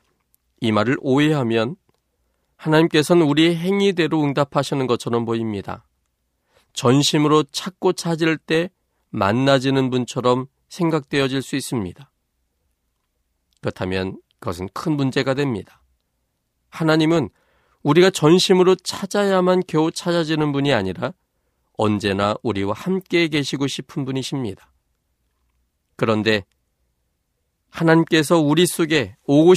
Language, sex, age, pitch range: Korean, male, 40-59, 100-155 Hz